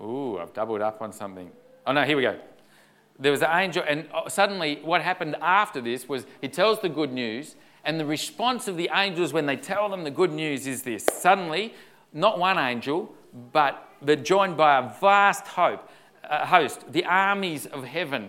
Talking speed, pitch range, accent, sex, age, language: 185 wpm, 140-190 Hz, Australian, male, 40-59, English